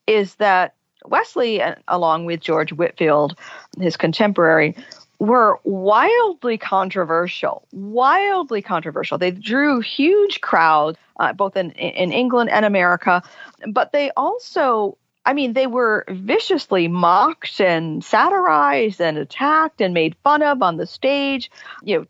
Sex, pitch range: female, 170-245 Hz